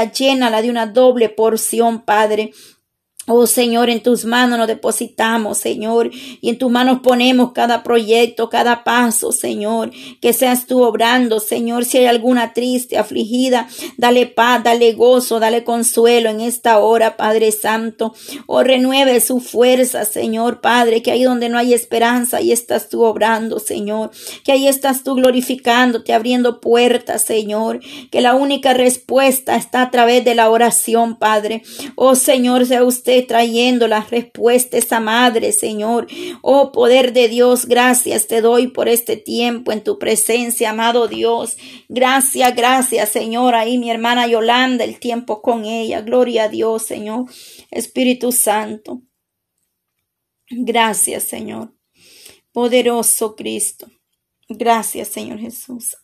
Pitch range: 230-250 Hz